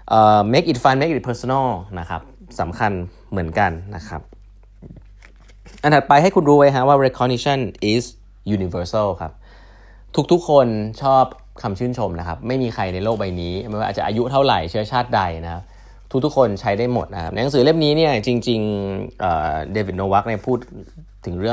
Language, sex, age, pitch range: Thai, male, 20-39, 95-125 Hz